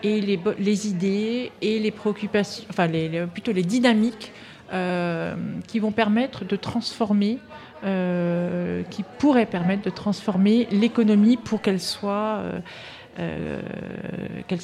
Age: 40-59